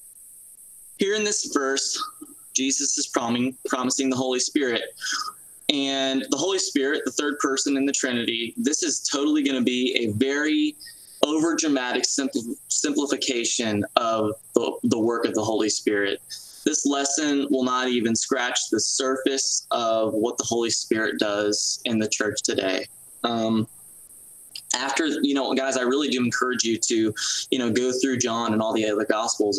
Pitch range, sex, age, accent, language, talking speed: 110-140 Hz, male, 20-39, American, English, 160 wpm